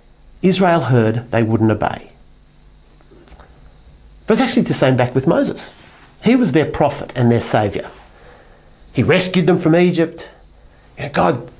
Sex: male